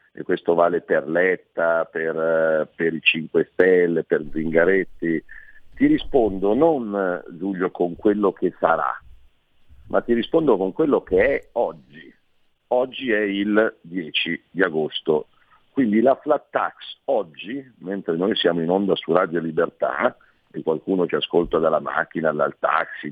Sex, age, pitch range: male, 50-69, 95-135 Hz